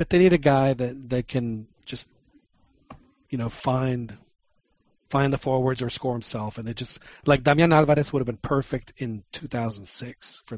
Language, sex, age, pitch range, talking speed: English, male, 40-59, 115-135 Hz, 180 wpm